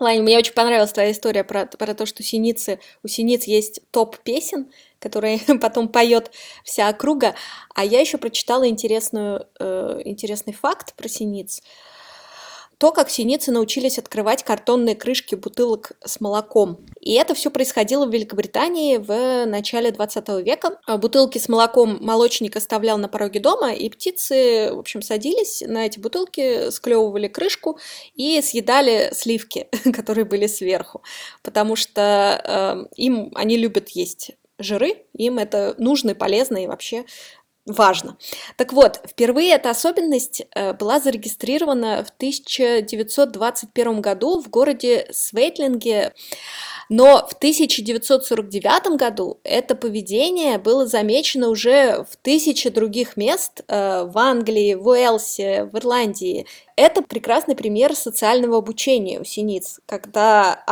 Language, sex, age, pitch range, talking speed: Russian, female, 20-39, 215-275 Hz, 130 wpm